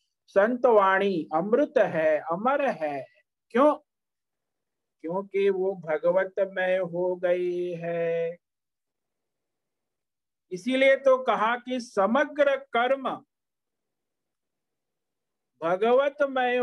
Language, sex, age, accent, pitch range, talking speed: Hindi, male, 50-69, native, 155-215 Hz, 70 wpm